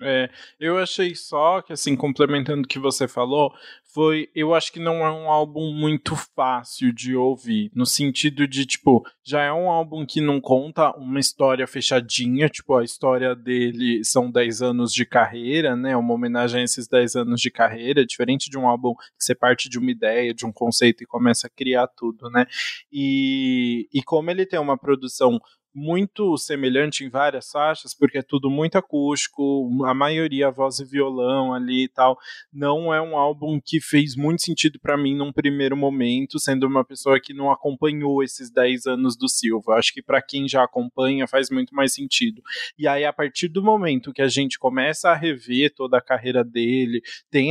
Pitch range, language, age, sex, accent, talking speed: 125-150 Hz, Portuguese, 20-39, male, Brazilian, 190 wpm